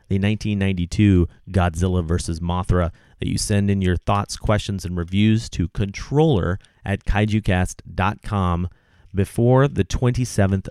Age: 30-49